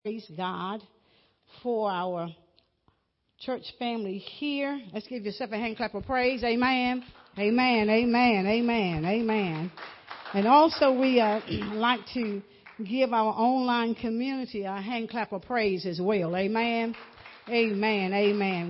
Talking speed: 130 wpm